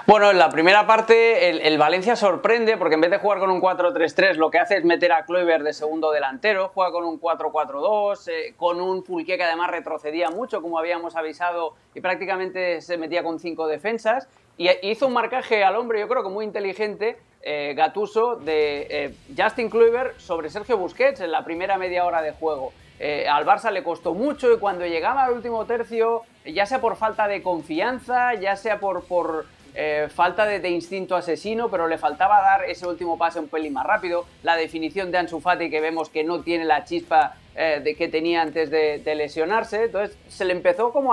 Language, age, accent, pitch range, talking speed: Spanish, 30-49, Spanish, 165-215 Hz, 205 wpm